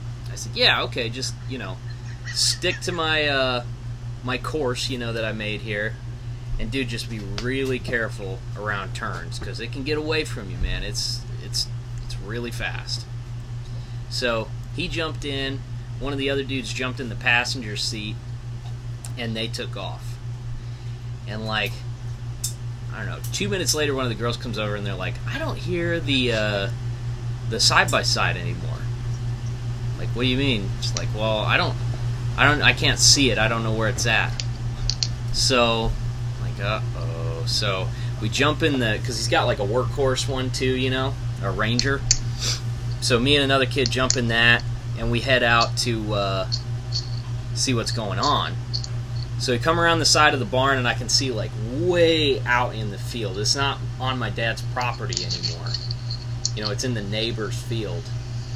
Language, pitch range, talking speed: English, 120-125 Hz, 180 wpm